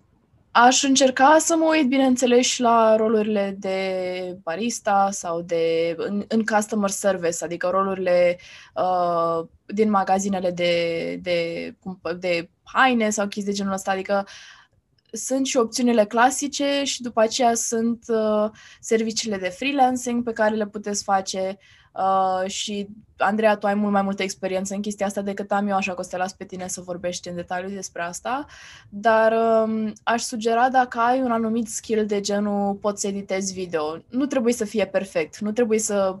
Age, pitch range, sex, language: 20-39, 190-230 Hz, female, Romanian